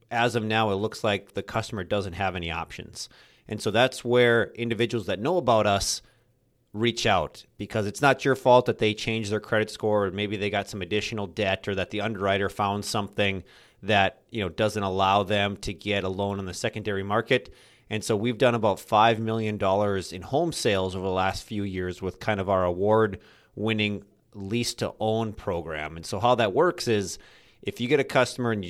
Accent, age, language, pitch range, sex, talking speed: American, 30-49, English, 100-115 Hz, male, 200 wpm